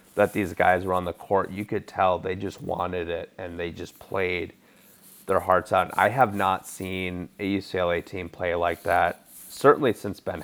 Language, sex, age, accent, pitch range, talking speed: English, male, 30-49, American, 90-105 Hz, 195 wpm